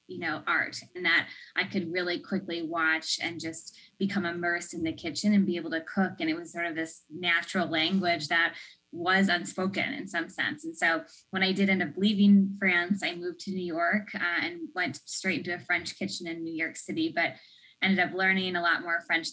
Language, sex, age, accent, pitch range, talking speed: English, female, 10-29, American, 175-200 Hz, 215 wpm